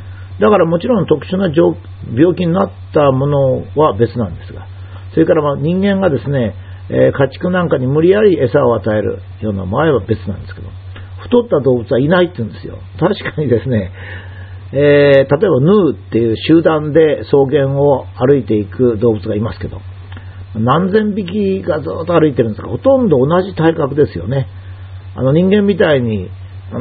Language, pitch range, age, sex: Japanese, 95-155 Hz, 50-69, male